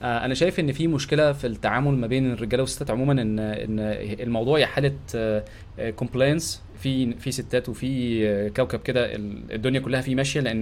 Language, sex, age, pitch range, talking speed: Arabic, male, 20-39, 110-135 Hz, 160 wpm